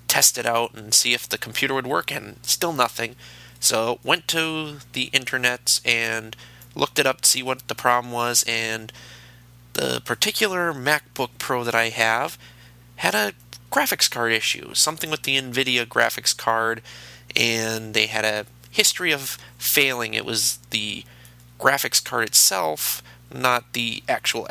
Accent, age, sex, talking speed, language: American, 30-49, male, 155 wpm, English